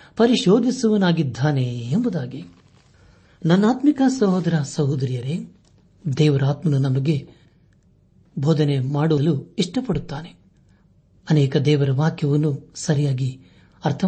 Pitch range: 140-180 Hz